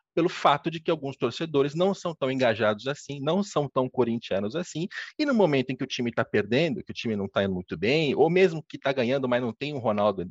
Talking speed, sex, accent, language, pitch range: 250 wpm, male, Brazilian, Portuguese, 115-180 Hz